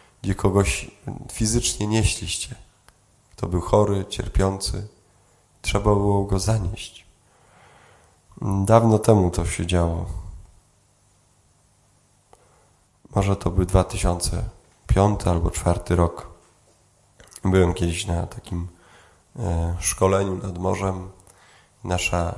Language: Polish